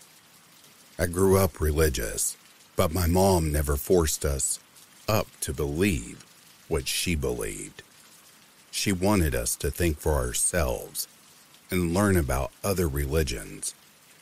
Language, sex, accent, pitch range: English, male, American, 70-90 Hz